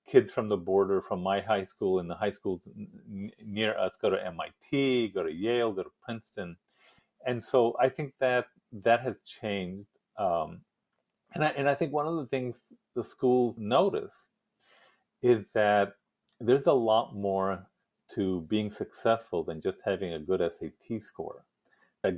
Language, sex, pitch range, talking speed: English, male, 95-130 Hz, 160 wpm